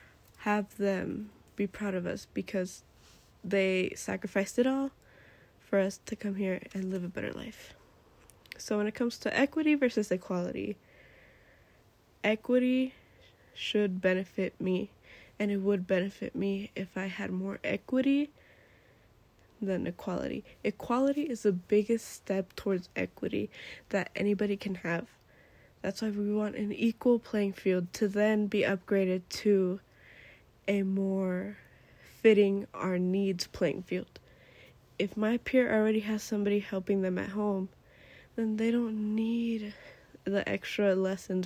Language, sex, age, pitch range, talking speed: English, female, 10-29, 185-215 Hz, 135 wpm